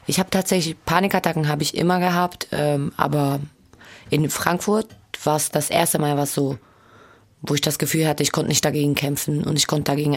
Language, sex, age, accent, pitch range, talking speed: German, female, 20-39, German, 145-165 Hz, 195 wpm